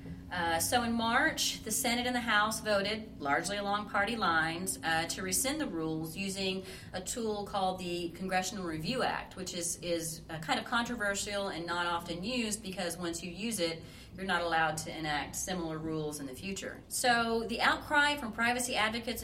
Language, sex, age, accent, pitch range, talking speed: English, female, 30-49, American, 160-210 Hz, 185 wpm